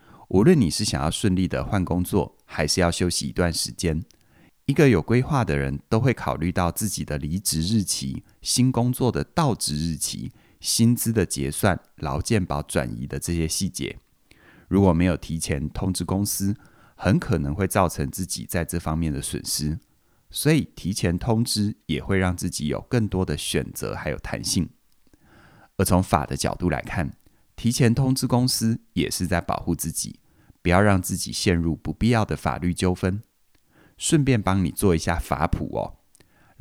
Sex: male